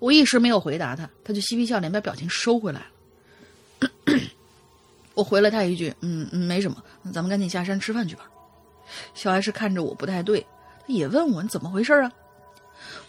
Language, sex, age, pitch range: Chinese, female, 30-49, 175-235 Hz